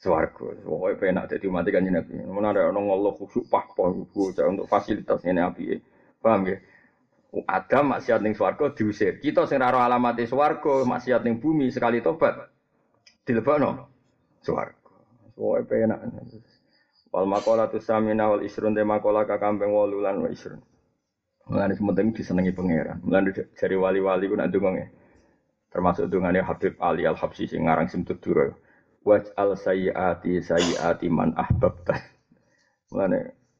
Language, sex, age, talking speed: Indonesian, male, 20-39, 145 wpm